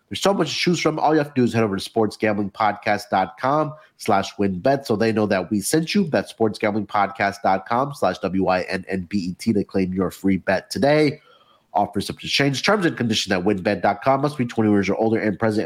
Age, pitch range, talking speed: 30-49, 105-160 Hz, 200 wpm